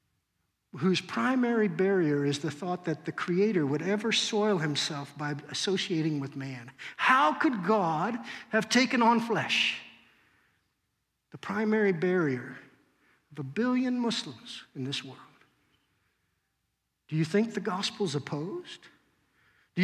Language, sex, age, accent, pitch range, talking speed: English, male, 50-69, American, 180-265 Hz, 125 wpm